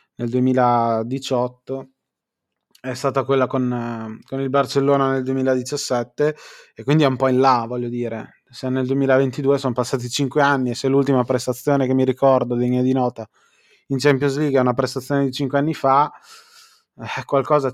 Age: 20-39